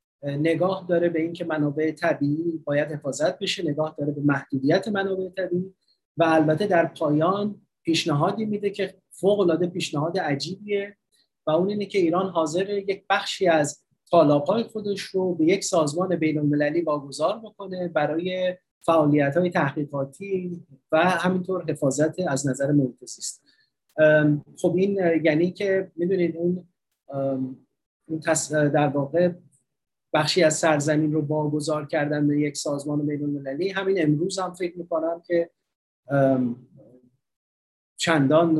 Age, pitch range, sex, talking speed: 30-49, 150-185 Hz, male, 125 wpm